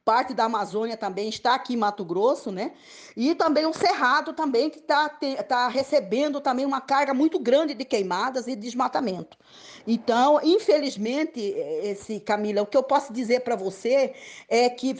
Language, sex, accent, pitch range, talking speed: Portuguese, female, Brazilian, 210-275 Hz, 165 wpm